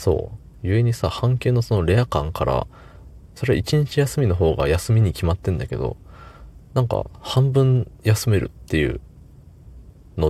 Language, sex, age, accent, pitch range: Japanese, male, 20-39, native, 80-95 Hz